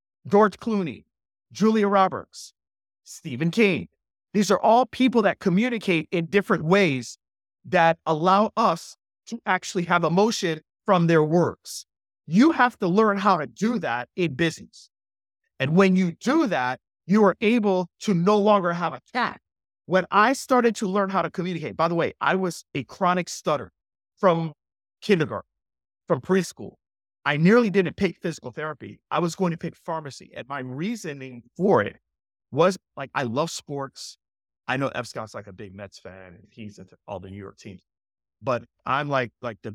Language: English